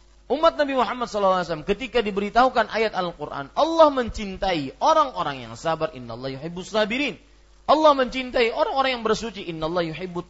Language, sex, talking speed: Malay, male, 135 wpm